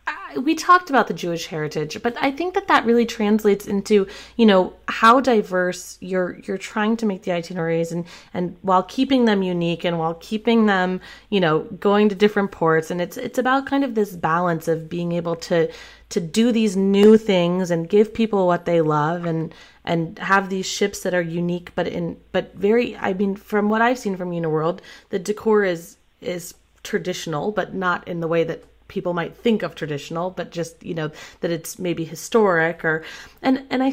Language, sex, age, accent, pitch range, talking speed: English, female, 30-49, American, 160-210 Hz, 200 wpm